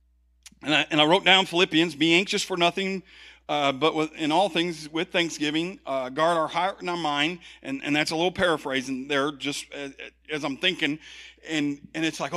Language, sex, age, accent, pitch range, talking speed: English, male, 40-59, American, 150-205 Hz, 195 wpm